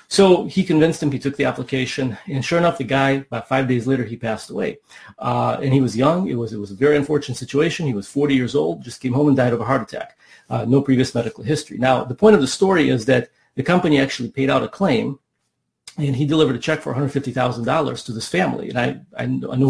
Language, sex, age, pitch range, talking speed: English, male, 40-59, 130-155 Hz, 245 wpm